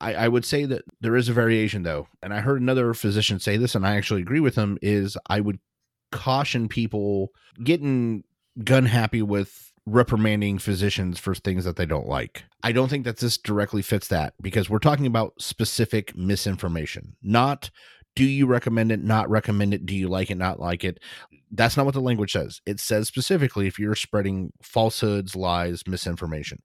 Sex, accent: male, American